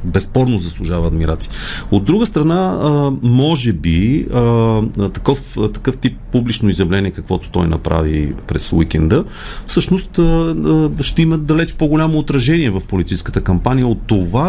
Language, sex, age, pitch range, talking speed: Bulgarian, male, 40-59, 95-135 Hz, 120 wpm